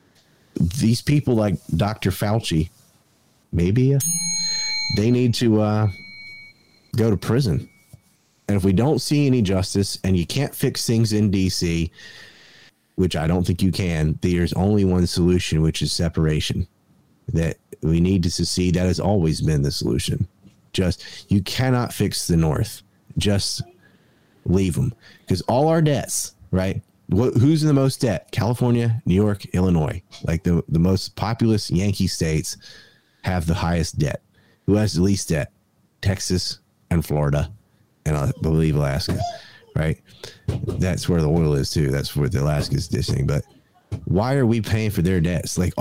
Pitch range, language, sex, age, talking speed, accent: 85-115 Hz, English, male, 30-49, 155 wpm, American